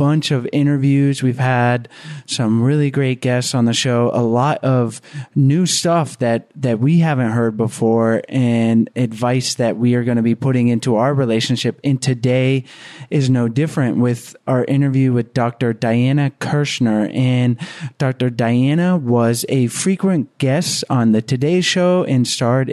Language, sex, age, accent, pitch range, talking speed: English, male, 30-49, American, 120-145 Hz, 160 wpm